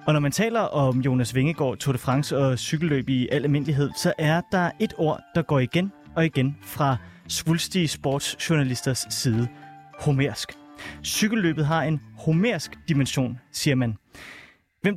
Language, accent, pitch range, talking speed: Danish, native, 125-155 Hz, 150 wpm